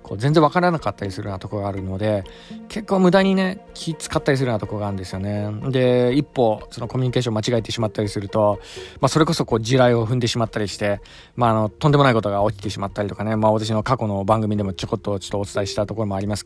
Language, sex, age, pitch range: Japanese, male, 20-39, 105-145 Hz